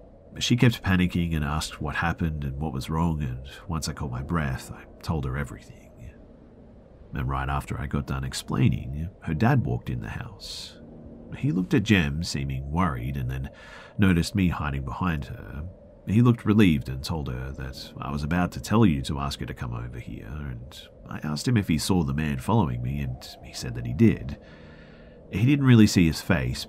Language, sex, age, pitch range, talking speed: English, male, 40-59, 70-90 Hz, 200 wpm